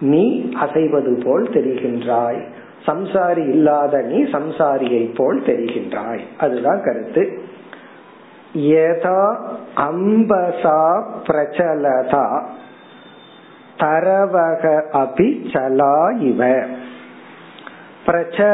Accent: native